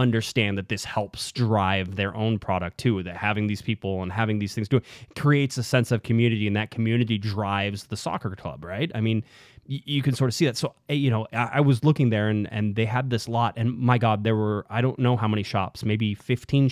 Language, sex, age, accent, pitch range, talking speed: English, male, 20-39, American, 105-130 Hz, 245 wpm